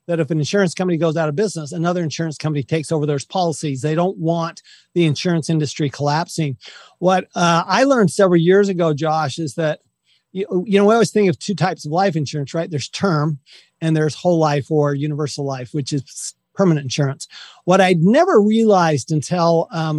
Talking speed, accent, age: 195 wpm, American, 40-59